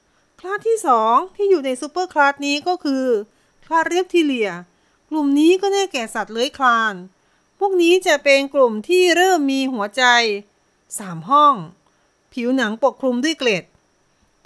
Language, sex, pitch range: Thai, female, 230-320 Hz